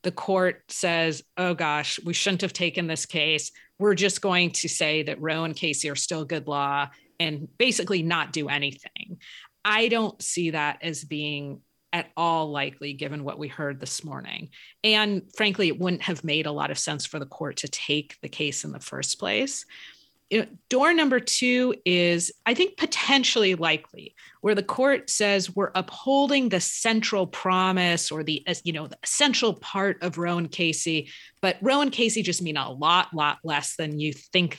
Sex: female